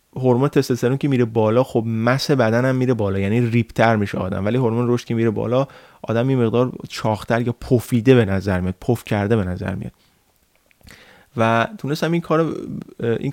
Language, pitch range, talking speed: Persian, 110-135 Hz, 175 wpm